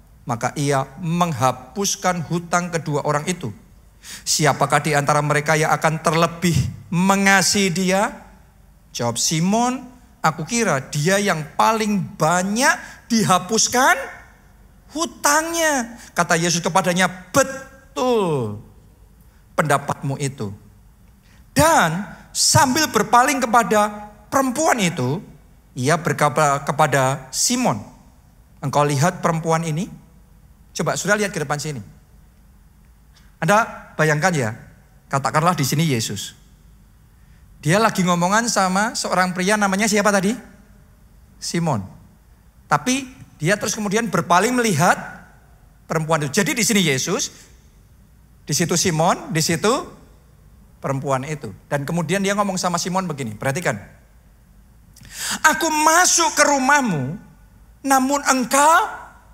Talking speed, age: 105 wpm, 50-69